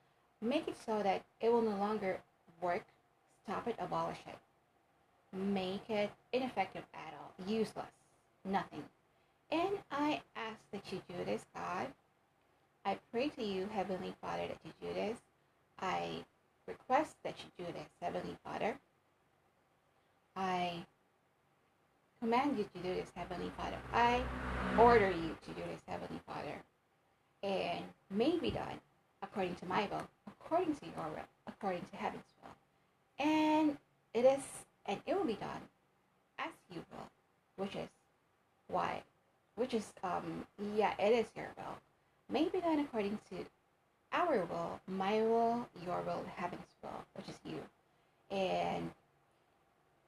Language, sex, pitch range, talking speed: English, female, 185-245 Hz, 140 wpm